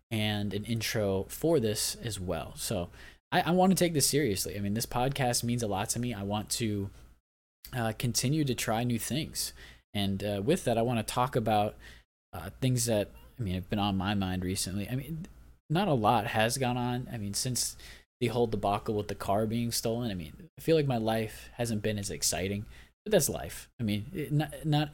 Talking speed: 215 wpm